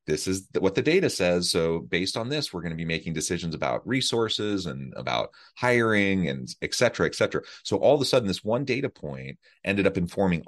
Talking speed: 220 wpm